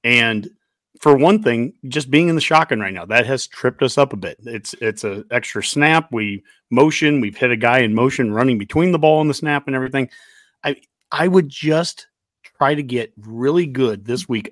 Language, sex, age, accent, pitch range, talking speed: English, male, 40-59, American, 125-155 Hz, 210 wpm